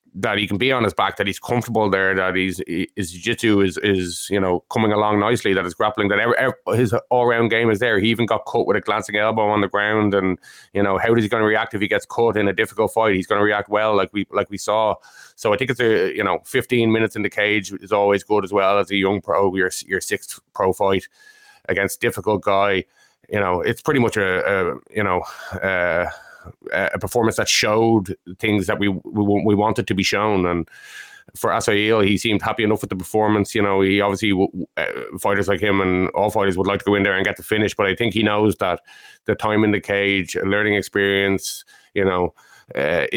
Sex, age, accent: male, 20-39, Irish